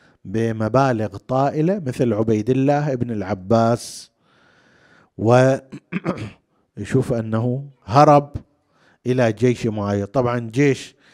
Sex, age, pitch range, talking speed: male, 50-69, 125-195 Hz, 80 wpm